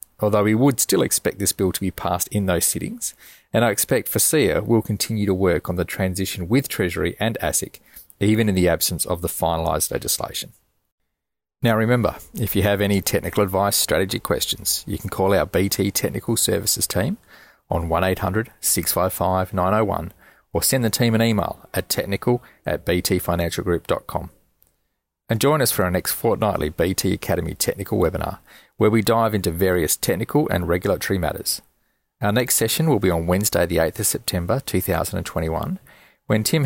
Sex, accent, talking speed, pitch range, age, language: male, Australian, 165 wpm, 95-115 Hz, 40-59, English